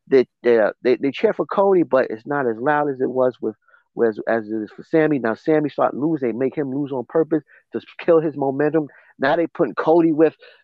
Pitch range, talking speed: 135-170 Hz, 225 wpm